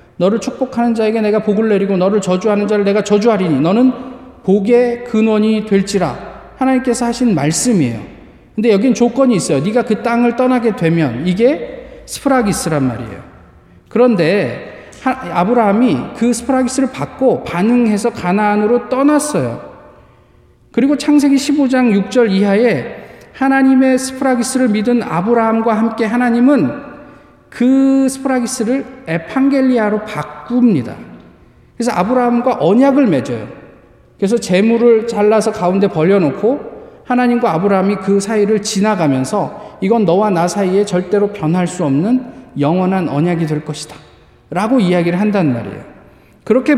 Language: Korean